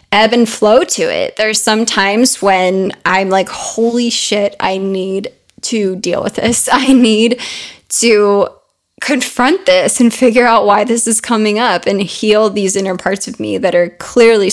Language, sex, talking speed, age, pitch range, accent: English, female, 175 wpm, 10-29, 195-240 Hz, American